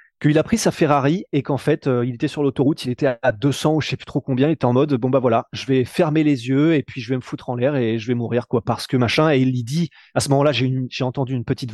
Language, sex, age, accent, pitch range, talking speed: French, male, 20-39, French, 130-175 Hz, 330 wpm